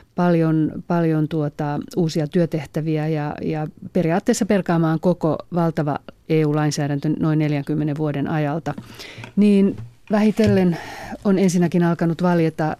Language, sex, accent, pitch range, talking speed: Finnish, female, native, 150-175 Hz, 100 wpm